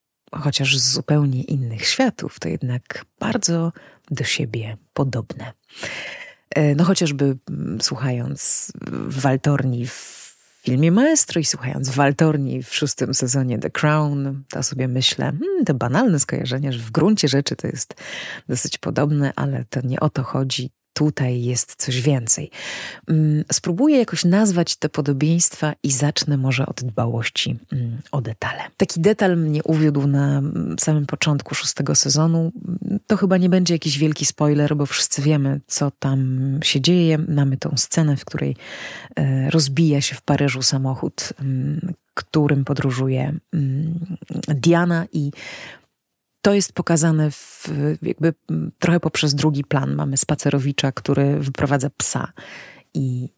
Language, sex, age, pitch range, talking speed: Polish, female, 30-49, 135-165 Hz, 130 wpm